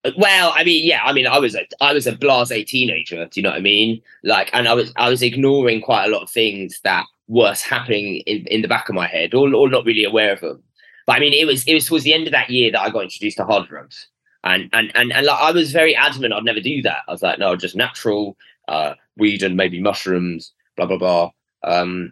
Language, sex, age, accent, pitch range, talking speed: English, male, 20-39, British, 105-145 Hz, 265 wpm